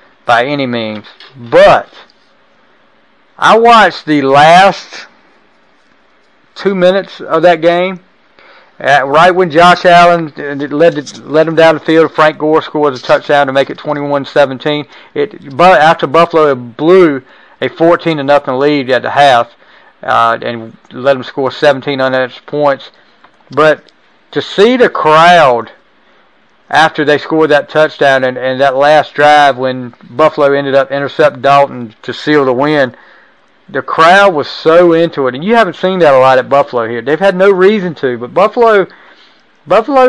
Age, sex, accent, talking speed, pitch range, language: 40-59, male, American, 155 wpm, 135-170 Hz, English